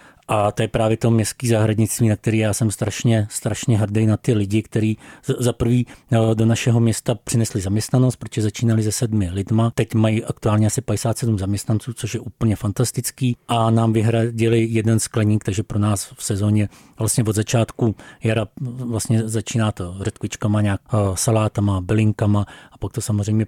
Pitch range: 105-115 Hz